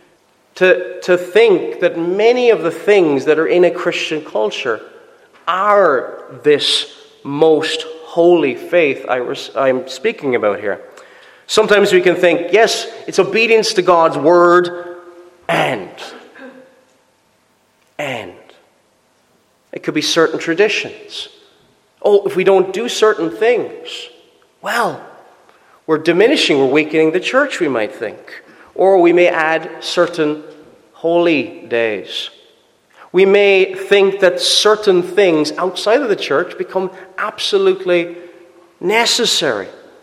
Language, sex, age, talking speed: English, male, 30-49, 120 wpm